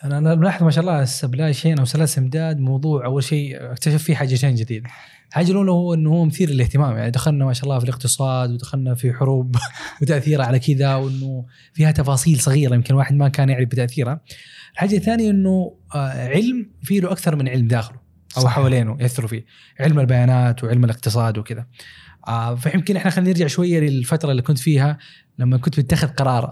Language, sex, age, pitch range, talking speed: Arabic, male, 20-39, 130-160 Hz, 175 wpm